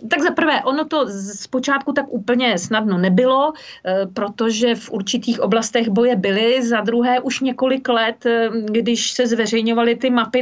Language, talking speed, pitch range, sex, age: Czech, 150 wpm, 220-260 Hz, female, 40-59